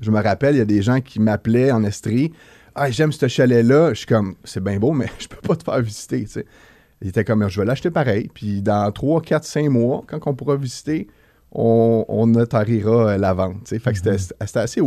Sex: male